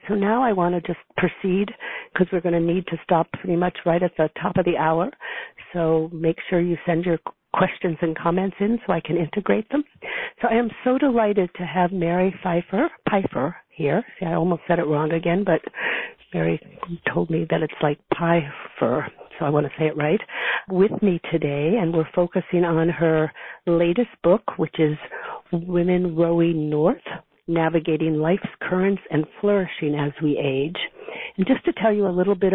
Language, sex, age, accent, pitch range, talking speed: English, female, 50-69, American, 165-195 Hz, 190 wpm